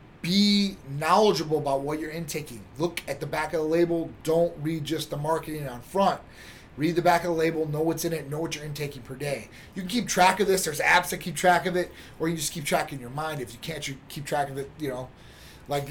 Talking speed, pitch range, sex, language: 255 wpm, 150-180 Hz, male, English